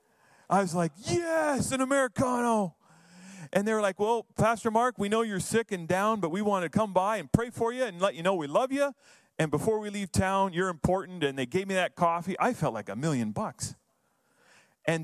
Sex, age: male, 40-59